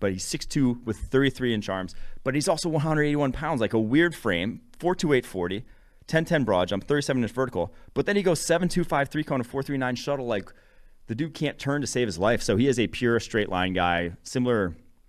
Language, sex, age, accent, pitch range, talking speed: English, male, 30-49, American, 90-120 Hz, 200 wpm